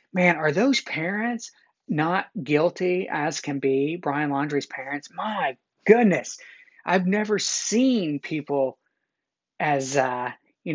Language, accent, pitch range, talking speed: English, American, 135-155 Hz, 115 wpm